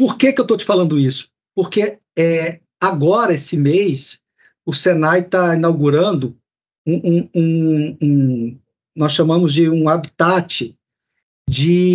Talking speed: 135 wpm